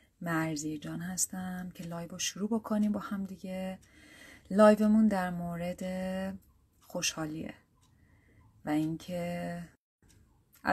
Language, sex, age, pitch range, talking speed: Persian, female, 30-49, 160-195 Hz, 95 wpm